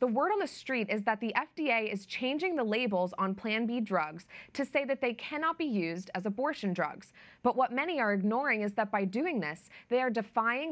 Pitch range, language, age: 195-260 Hz, English, 20-39